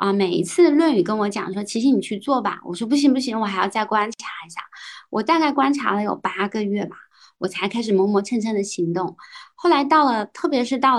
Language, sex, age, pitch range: Chinese, female, 20-39, 195-280 Hz